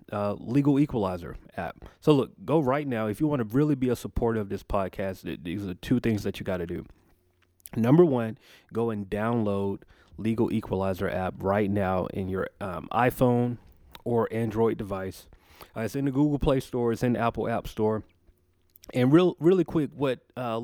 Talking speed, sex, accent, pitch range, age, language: 190 wpm, male, American, 100-125 Hz, 30-49, English